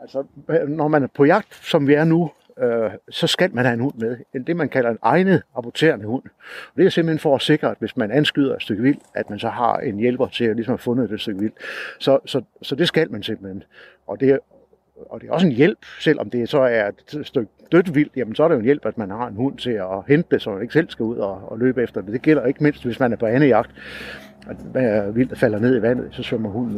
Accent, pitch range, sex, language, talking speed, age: native, 115-145 Hz, male, Danish, 275 wpm, 60-79